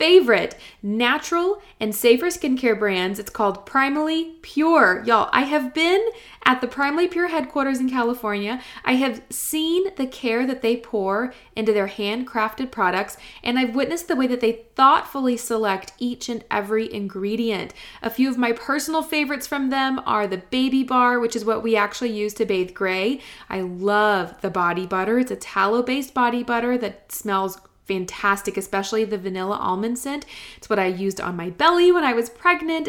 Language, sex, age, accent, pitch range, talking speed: English, female, 20-39, American, 200-260 Hz, 175 wpm